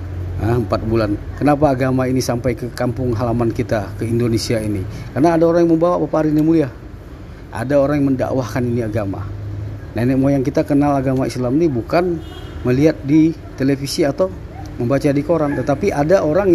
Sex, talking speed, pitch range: male, 165 wpm, 105-140 Hz